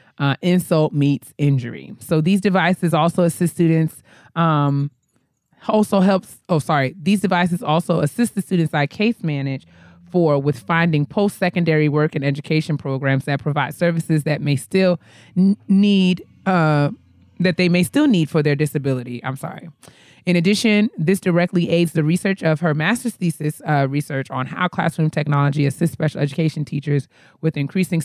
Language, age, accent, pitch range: English, 20-39, American, 145-175 Hz